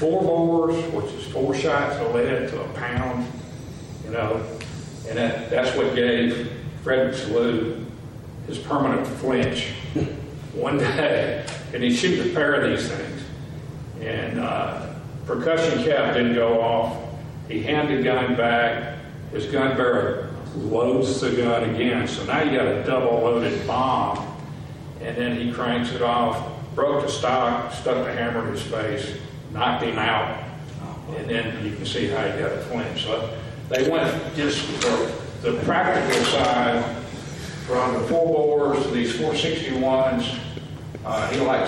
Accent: American